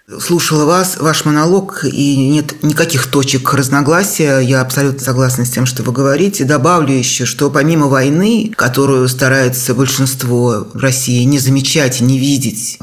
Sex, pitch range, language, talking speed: male, 130-160 Hz, Russian, 145 wpm